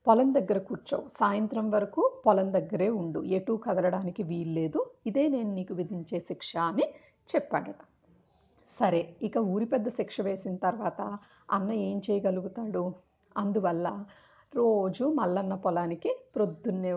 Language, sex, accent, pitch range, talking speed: Telugu, female, native, 185-230 Hz, 115 wpm